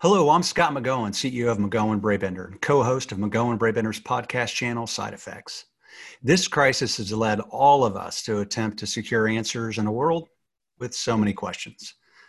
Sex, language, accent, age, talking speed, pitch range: male, English, American, 40-59, 175 wpm, 105-130 Hz